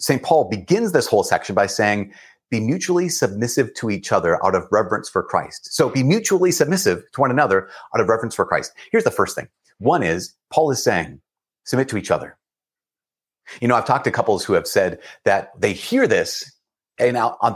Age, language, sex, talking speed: 30-49, English, male, 200 wpm